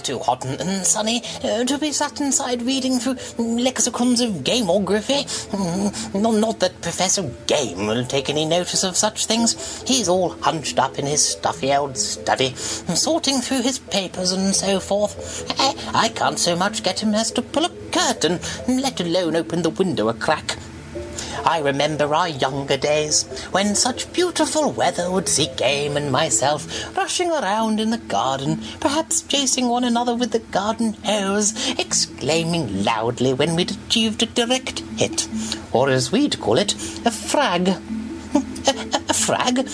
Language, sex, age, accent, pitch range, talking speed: English, male, 30-49, British, 180-260 Hz, 155 wpm